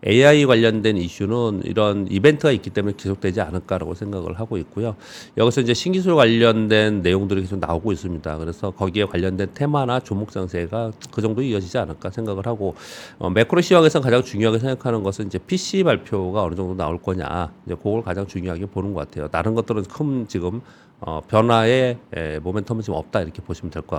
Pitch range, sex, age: 90-120 Hz, male, 40-59